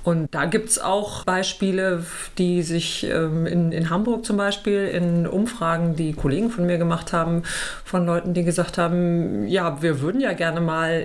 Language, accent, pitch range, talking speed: German, German, 155-190 Hz, 170 wpm